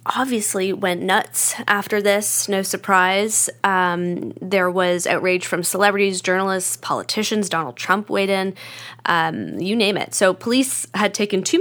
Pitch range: 170-210 Hz